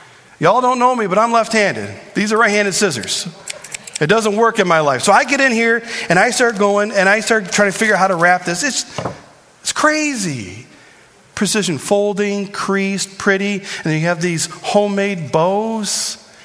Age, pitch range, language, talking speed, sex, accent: 40-59, 175-225 Hz, English, 195 wpm, male, American